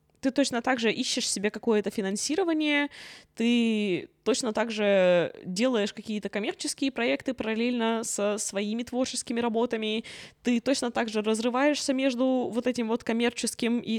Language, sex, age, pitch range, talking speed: Russian, female, 20-39, 205-265 Hz, 135 wpm